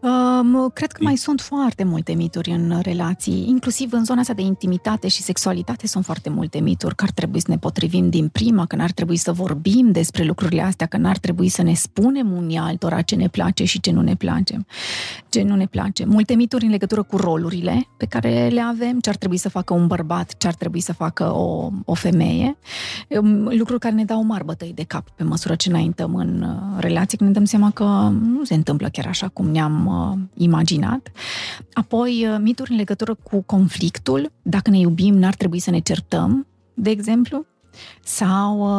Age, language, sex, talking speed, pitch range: 30-49, Romanian, female, 195 wpm, 170-215 Hz